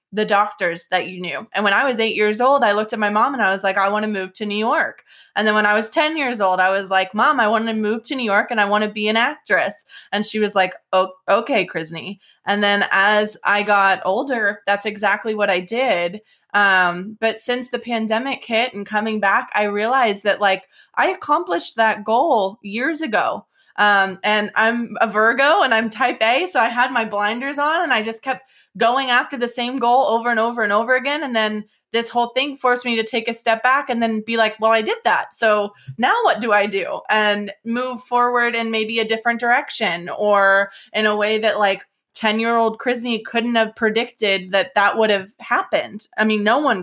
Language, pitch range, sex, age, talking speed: English, 200-235 Hz, female, 20-39, 225 wpm